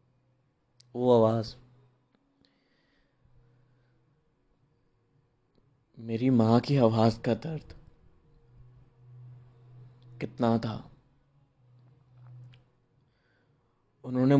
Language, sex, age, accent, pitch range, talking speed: Hindi, male, 20-39, native, 125-145 Hz, 45 wpm